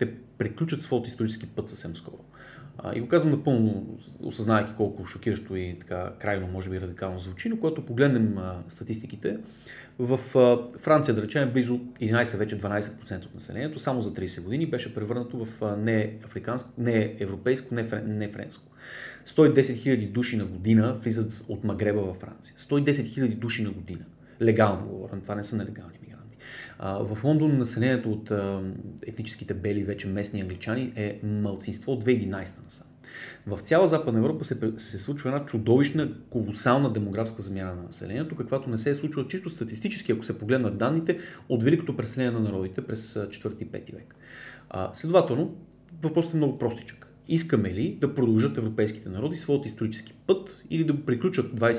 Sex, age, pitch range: male, 30-49, 105-135 Hz